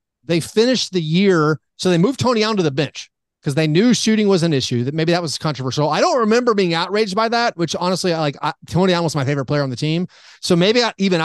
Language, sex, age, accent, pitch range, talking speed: English, male, 30-49, American, 140-190 Hz, 255 wpm